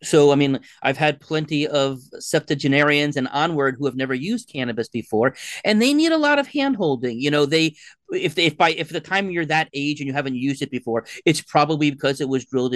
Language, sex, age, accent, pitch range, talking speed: English, male, 30-49, American, 135-165 Hz, 225 wpm